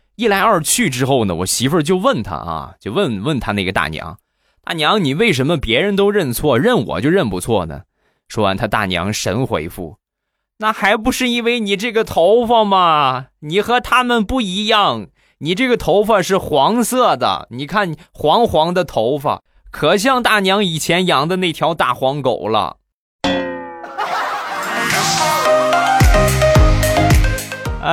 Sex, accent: male, native